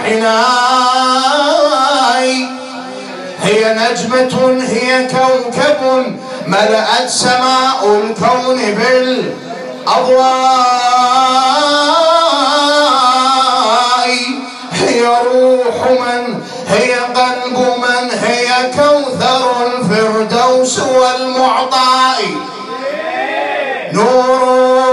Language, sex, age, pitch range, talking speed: English, male, 30-49, 200-255 Hz, 50 wpm